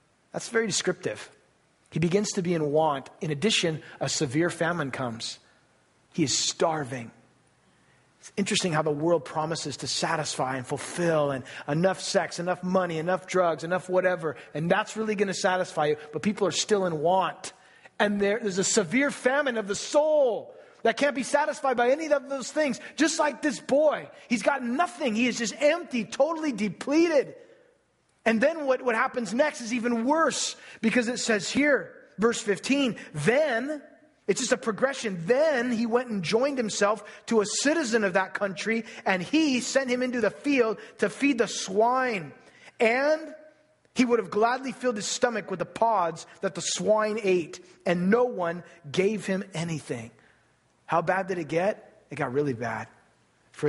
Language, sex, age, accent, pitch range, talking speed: English, male, 30-49, American, 170-255 Hz, 170 wpm